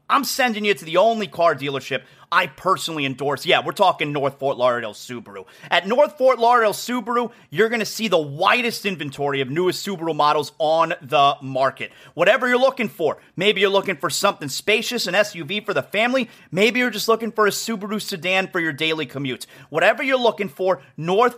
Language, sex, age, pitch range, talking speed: English, male, 30-49, 160-225 Hz, 195 wpm